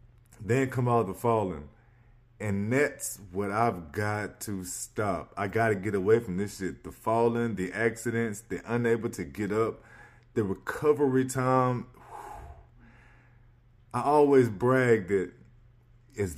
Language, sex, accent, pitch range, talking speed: English, male, American, 105-125 Hz, 130 wpm